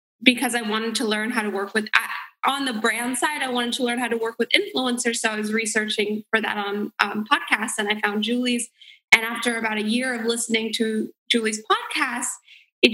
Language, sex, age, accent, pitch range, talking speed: English, female, 20-39, American, 220-245 Hz, 215 wpm